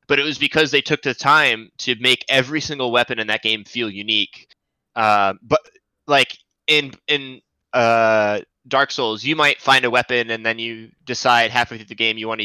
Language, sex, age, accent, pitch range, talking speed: English, male, 20-39, American, 110-130 Hz, 200 wpm